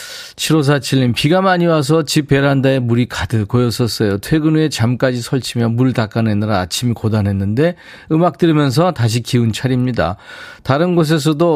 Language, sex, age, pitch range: Korean, male, 40-59, 105-150 Hz